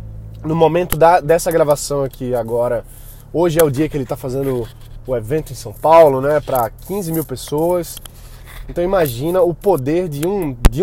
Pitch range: 130-190 Hz